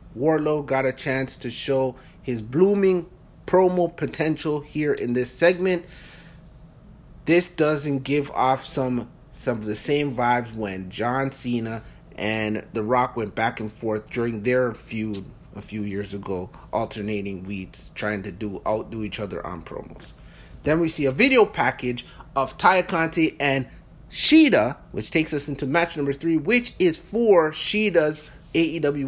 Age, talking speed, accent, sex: 30-49, 150 wpm, American, male